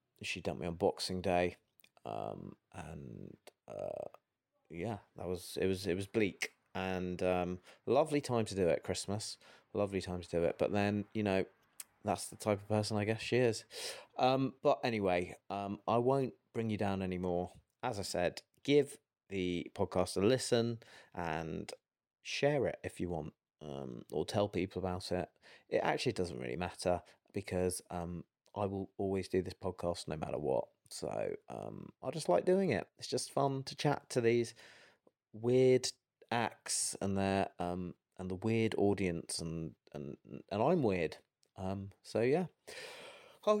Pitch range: 90-120 Hz